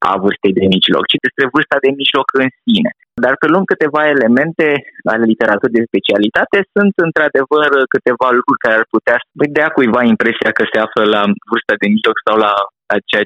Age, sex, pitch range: 20-39, male, 100-120 Hz